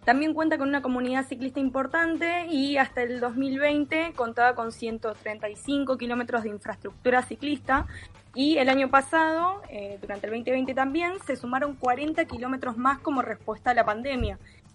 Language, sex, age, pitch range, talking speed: Spanish, female, 10-29, 230-295 Hz, 150 wpm